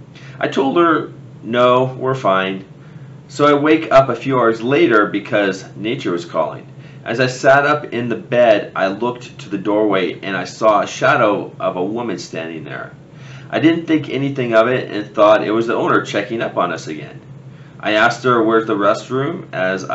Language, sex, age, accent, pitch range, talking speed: English, male, 30-49, American, 115-145 Hz, 195 wpm